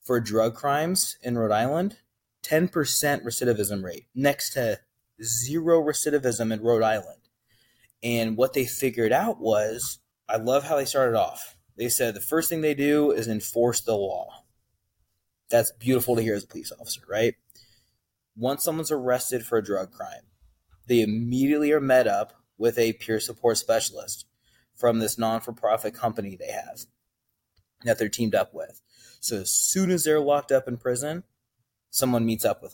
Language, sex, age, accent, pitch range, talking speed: English, male, 30-49, American, 110-130 Hz, 165 wpm